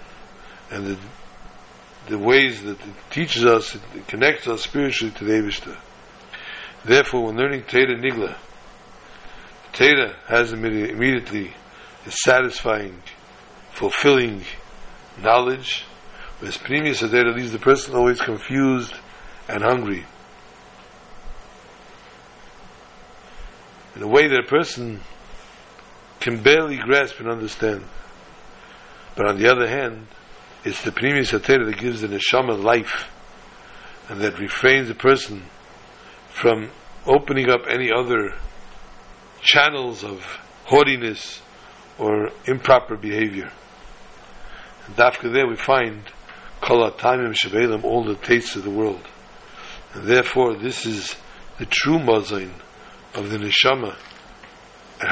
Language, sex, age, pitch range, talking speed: English, male, 60-79, 100-125 Hz, 110 wpm